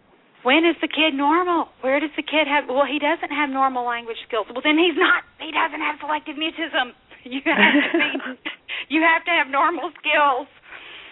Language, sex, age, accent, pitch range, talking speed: English, female, 40-59, American, 205-280 Hz, 195 wpm